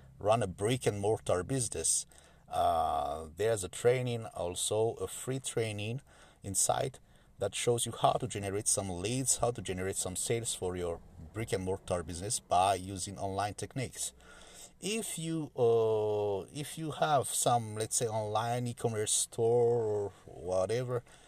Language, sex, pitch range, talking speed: English, male, 95-120 Hz, 135 wpm